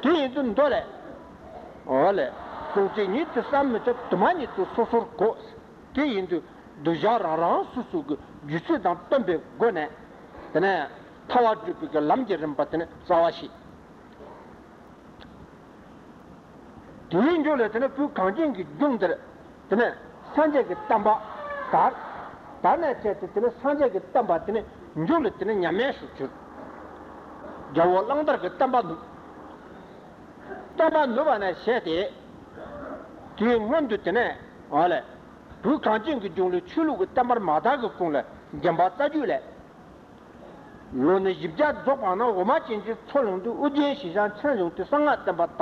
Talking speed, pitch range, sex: 75 wpm, 190-290 Hz, male